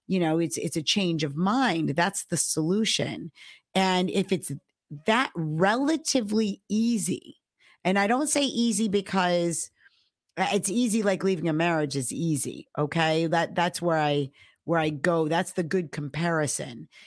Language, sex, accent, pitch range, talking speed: English, female, American, 160-205 Hz, 150 wpm